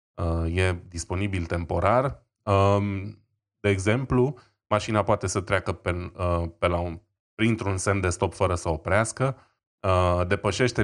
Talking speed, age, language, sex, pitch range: 115 wpm, 20-39, Romanian, male, 95-115 Hz